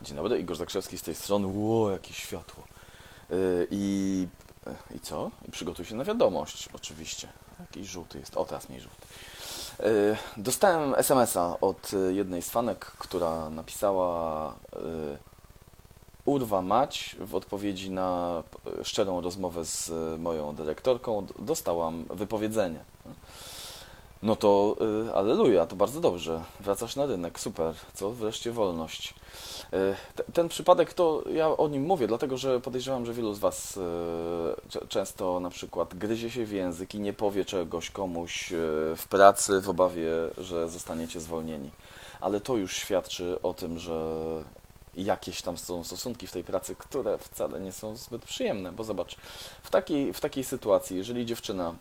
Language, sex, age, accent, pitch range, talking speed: Polish, male, 20-39, native, 85-110 Hz, 140 wpm